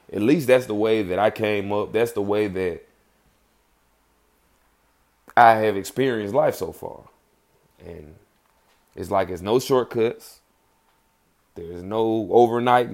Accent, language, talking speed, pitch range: American, English, 130 wpm, 85-105 Hz